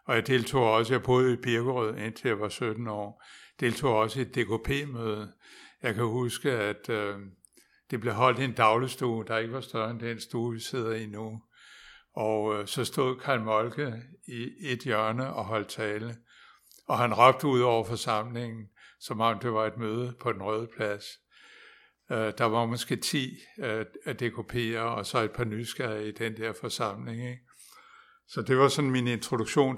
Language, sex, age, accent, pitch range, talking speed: Danish, male, 60-79, native, 110-125 Hz, 185 wpm